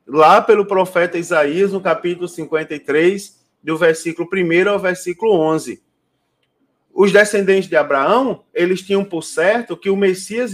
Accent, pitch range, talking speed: Brazilian, 160-205 Hz, 135 wpm